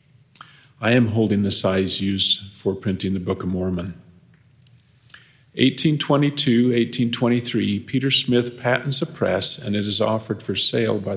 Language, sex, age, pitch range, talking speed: English, male, 50-69, 105-130 Hz, 135 wpm